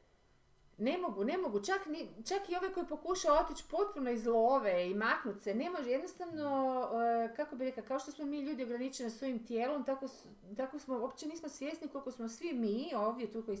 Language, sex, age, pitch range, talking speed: Croatian, female, 40-59, 205-270 Hz, 195 wpm